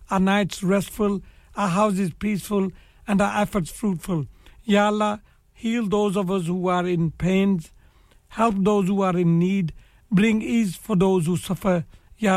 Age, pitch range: 60-79, 170-200 Hz